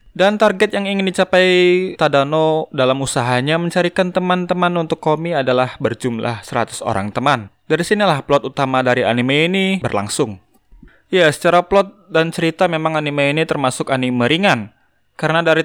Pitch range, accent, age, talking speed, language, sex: 135-185 Hz, native, 20-39, 145 wpm, Indonesian, male